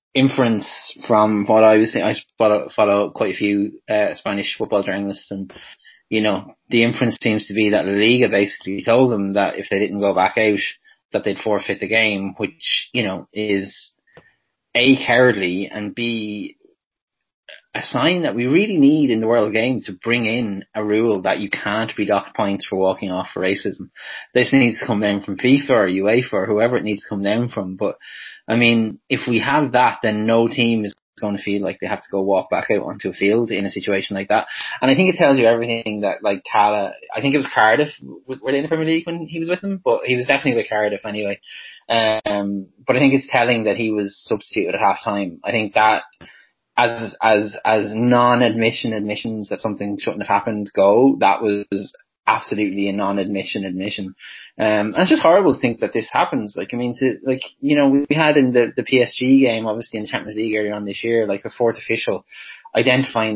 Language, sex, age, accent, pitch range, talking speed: English, male, 20-39, Irish, 100-125 Hz, 215 wpm